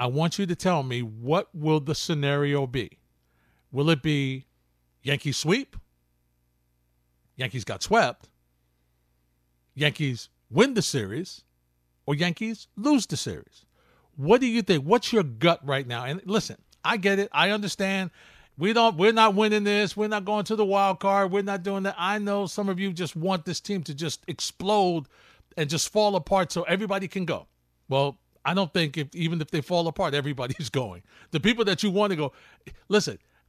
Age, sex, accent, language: 50-69, male, American, English